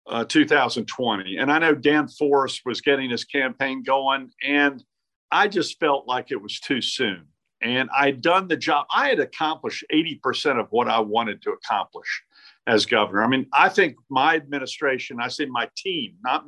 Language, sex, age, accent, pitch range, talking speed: English, male, 50-69, American, 130-170 Hz, 180 wpm